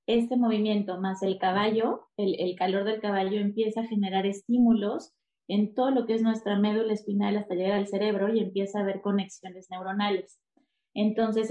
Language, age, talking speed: Spanish, 20-39, 170 wpm